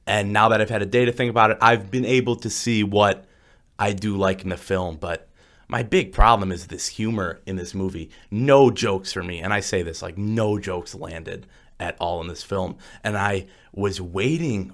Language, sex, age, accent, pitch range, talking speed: English, male, 30-49, American, 95-115 Hz, 220 wpm